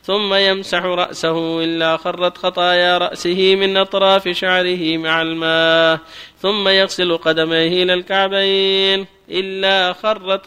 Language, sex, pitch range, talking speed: Arabic, male, 165-195 Hz, 110 wpm